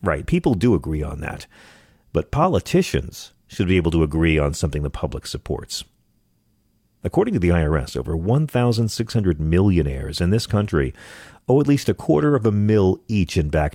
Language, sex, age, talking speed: English, male, 40-59, 170 wpm